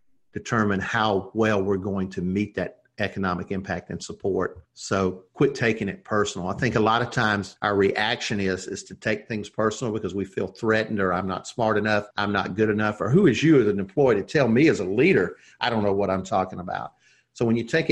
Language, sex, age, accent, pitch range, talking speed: English, male, 50-69, American, 95-115 Hz, 230 wpm